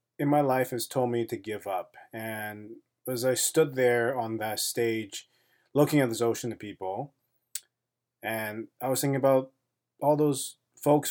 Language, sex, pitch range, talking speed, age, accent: English, male, 115-140 Hz, 165 wpm, 30-49, American